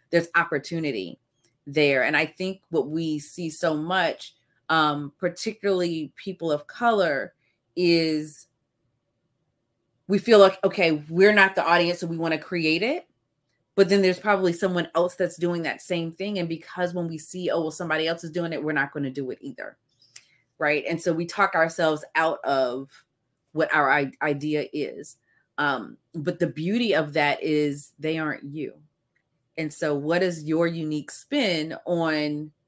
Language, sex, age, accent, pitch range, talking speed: English, female, 30-49, American, 145-175 Hz, 165 wpm